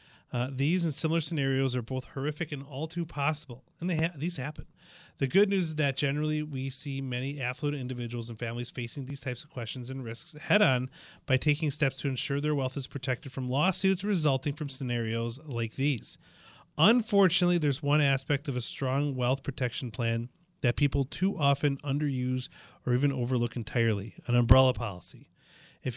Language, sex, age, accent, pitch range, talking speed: English, male, 30-49, American, 125-150 Hz, 175 wpm